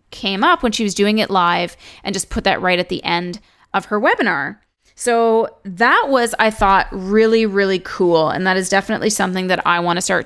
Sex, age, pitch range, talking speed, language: female, 20-39, 190-225 Hz, 210 wpm, English